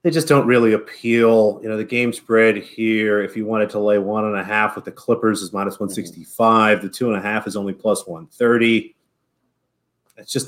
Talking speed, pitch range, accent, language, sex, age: 210 wpm, 100-115 Hz, American, English, male, 30-49